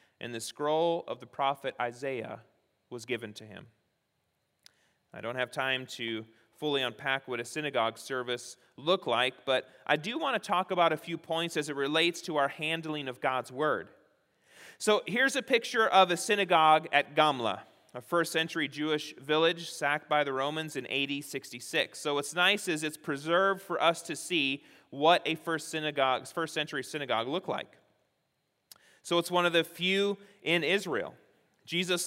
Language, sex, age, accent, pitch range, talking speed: English, male, 30-49, American, 135-175 Hz, 170 wpm